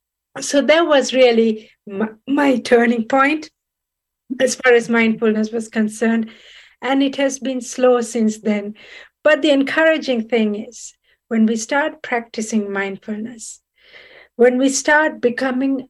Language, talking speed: English, 130 wpm